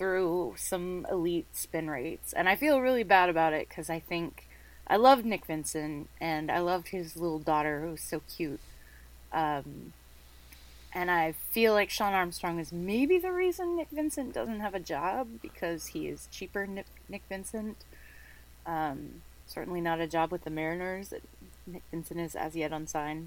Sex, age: female, 20-39